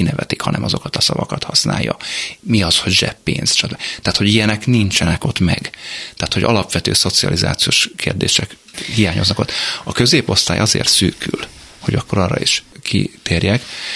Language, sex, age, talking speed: Hungarian, male, 30-49, 140 wpm